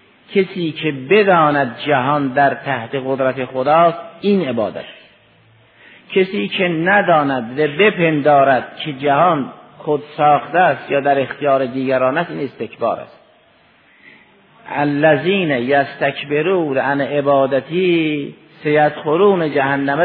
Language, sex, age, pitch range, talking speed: Persian, male, 50-69, 135-185 Hz, 110 wpm